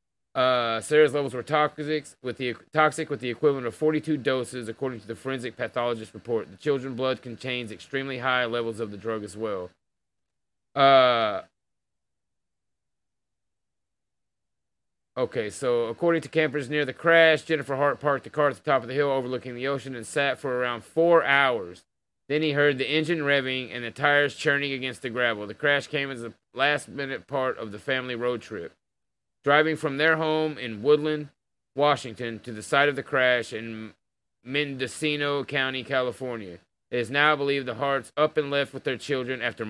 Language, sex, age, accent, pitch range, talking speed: English, male, 30-49, American, 120-145 Hz, 175 wpm